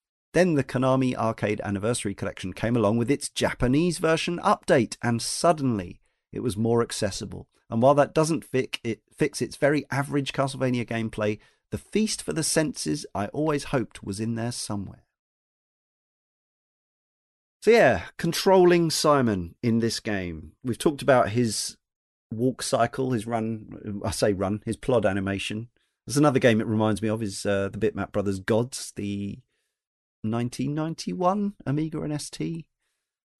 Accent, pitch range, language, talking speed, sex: British, 105-135 Hz, English, 145 wpm, male